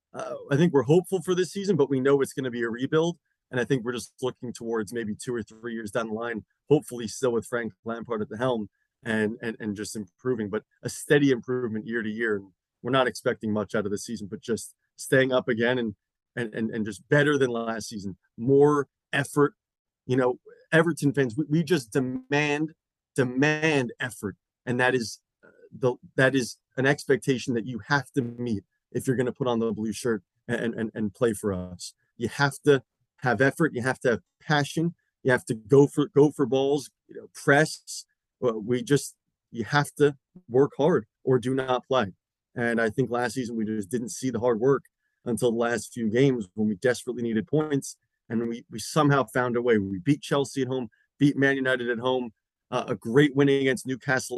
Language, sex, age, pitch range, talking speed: English, male, 30-49, 115-140 Hz, 210 wpm